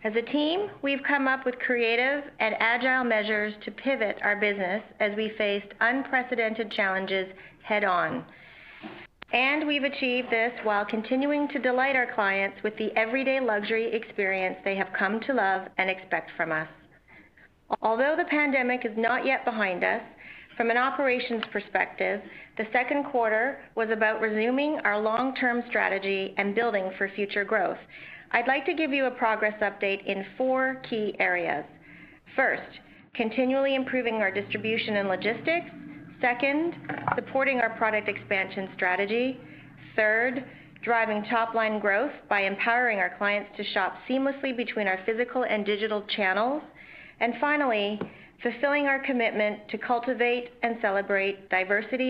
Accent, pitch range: American, 205-255 Hz